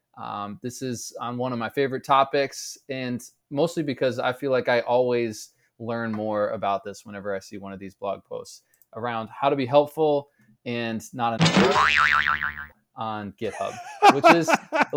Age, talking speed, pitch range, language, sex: 20-39, 165 wpm, 115-140 Hz, English, male